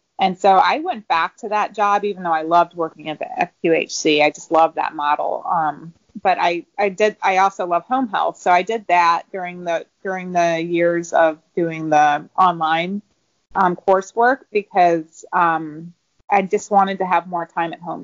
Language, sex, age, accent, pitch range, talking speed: English, female, 30-49, American, 165-190 Hz, 190 wpm